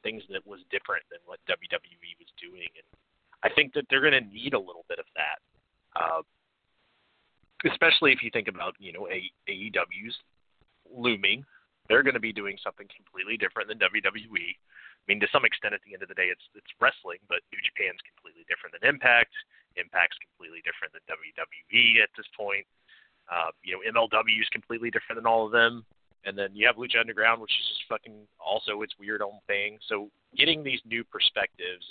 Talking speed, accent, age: 190 wpm, American, 30-49